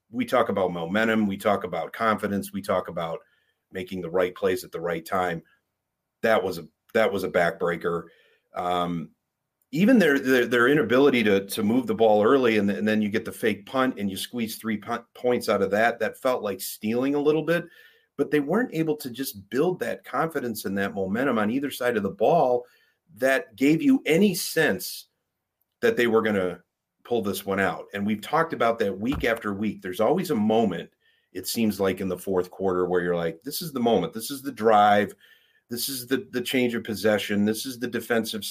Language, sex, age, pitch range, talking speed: English, male, 40-59, 95-125 Hz, 210 wpm